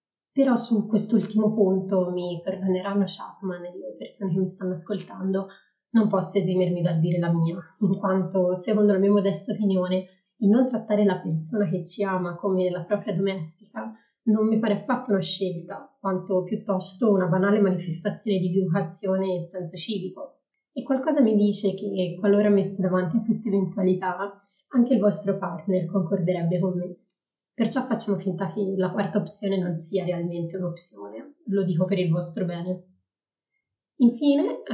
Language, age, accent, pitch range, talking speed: Italian, 20-39, native, 185-210 Hz, 160 wpm